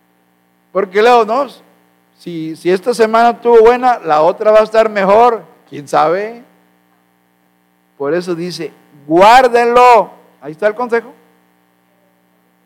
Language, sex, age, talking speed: Spanish, male, 50-69, 120 wpm